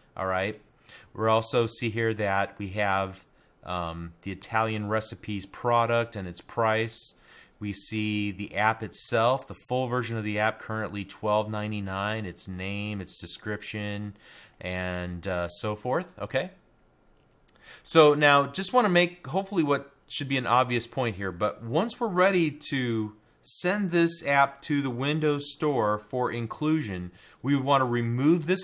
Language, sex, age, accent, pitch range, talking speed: English, male, 30-49, American, 105-135 Hz, 155 wpm